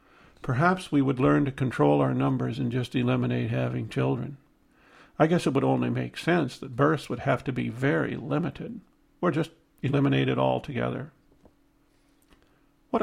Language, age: English, 50-69